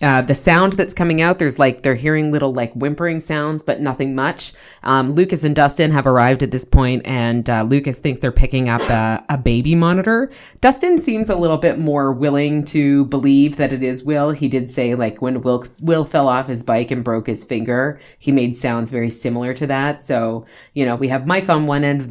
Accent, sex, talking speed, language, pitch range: American, female, 225 wpm, English, 120-150 Hz